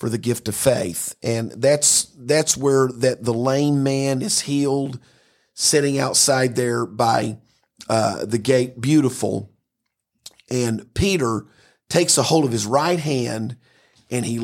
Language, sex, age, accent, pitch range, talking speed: English, male, 50-69, American, 120-145 Hz, 140 wpm